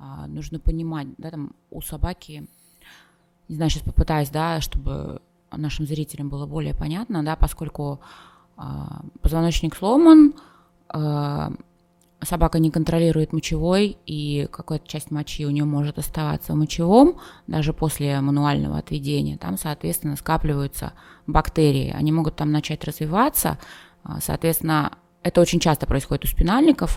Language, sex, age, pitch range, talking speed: Russian, female, 20-39, 140-165 Hz, 125 wpm